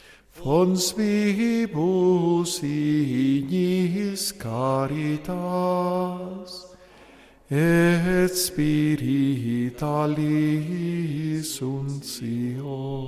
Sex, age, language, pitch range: male, 50-69, Spanish, 140-185 Hz